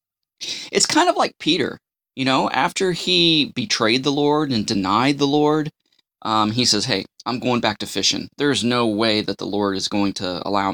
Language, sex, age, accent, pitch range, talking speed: English, male, 20-39, American, 105-140 Hz, 195 wpm